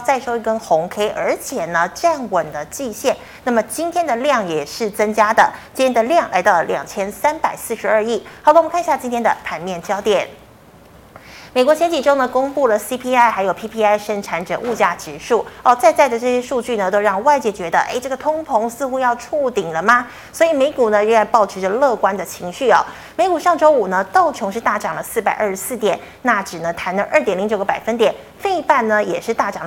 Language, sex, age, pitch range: Chinese, female, 30-49, 205-290 Hz